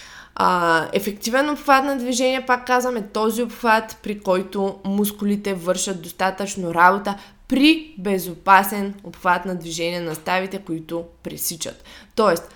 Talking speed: 125 wpm